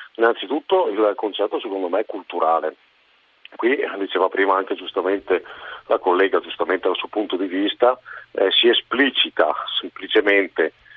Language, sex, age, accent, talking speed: Italian, male, 50-69, native, 130 wpm